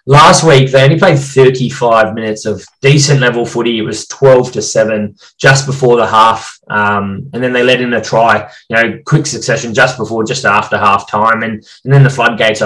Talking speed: 205 wpm